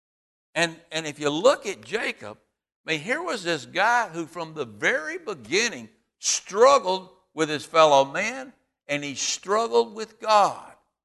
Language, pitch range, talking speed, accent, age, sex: English, 160-250 Hz, 150 wpm, American, 60-79, male